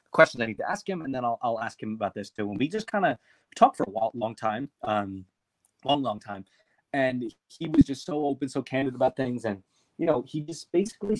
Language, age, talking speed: English, 30-49, 250 wpm